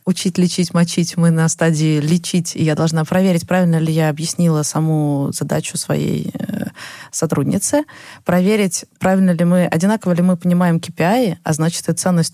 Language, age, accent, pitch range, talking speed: Russian, 20-39, native, 150-180 Hz, 160 wpm